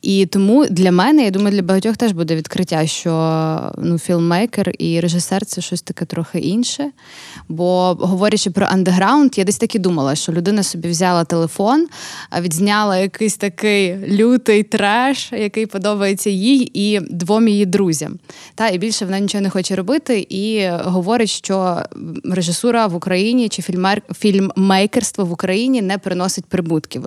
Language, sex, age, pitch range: Ukrainian, female, 20-39, 175-205 Hz